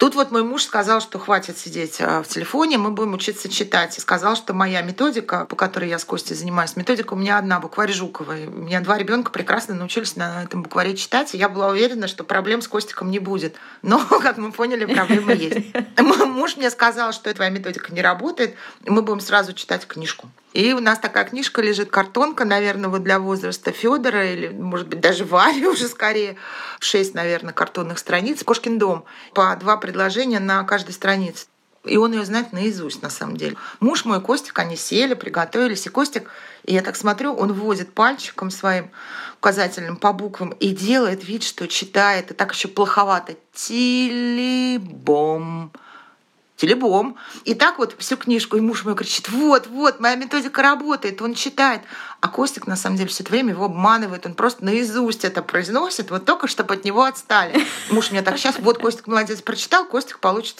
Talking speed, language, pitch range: 185 wpm, Russian, 190-240 Hz